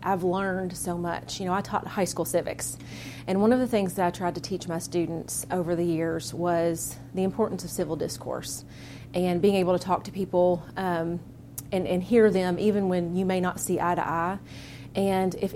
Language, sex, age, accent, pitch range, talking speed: English, female, 30-49, American, 165-190 Hz, 210 wpm